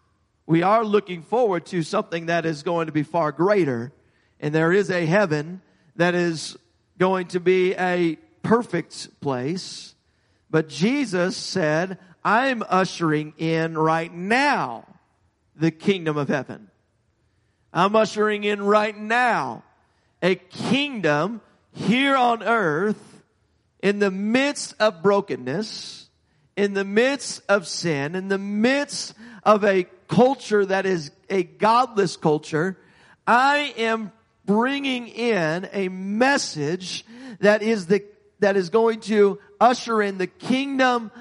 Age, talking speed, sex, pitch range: 40-59, 130 wpm, male, 155-220 Hz